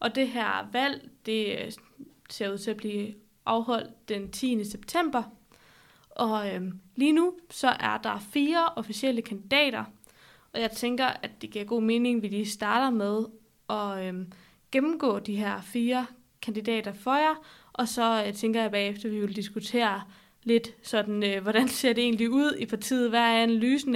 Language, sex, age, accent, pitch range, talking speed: Danish, female, 20-39, native, 210-250 Hz, 175 wpm